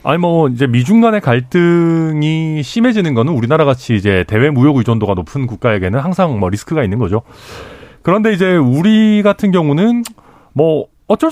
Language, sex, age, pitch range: Korean, male, 40-59, 105-165 Hz